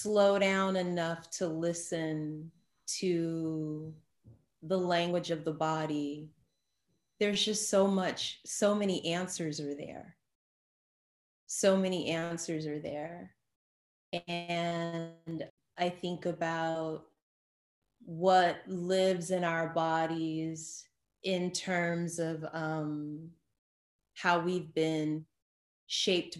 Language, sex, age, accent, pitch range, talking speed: English, female, 30-49, American, 155-175 Hz, 95 wpm